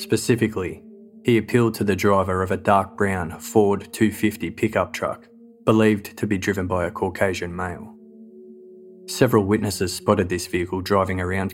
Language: English